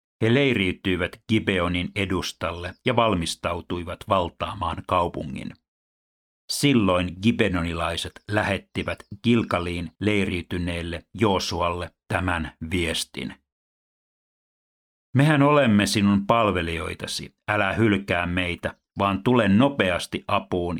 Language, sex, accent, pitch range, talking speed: Finnish, male, native, 85-100 Hz, 80 wpm